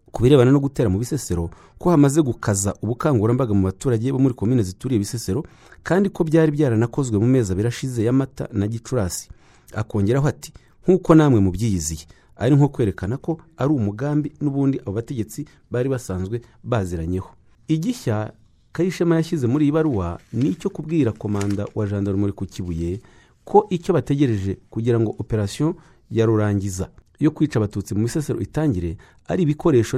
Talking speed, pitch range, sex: 140 wpm, 100-145 Hz, male